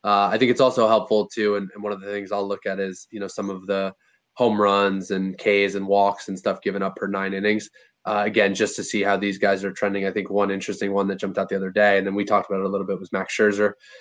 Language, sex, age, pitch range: English, male, 20-39, 100-110 Hz